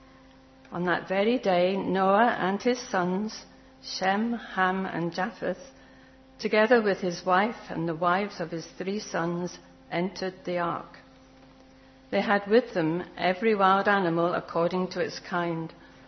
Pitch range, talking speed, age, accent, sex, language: 160-200 Hz, 140 wpm, 60-79, British, female, English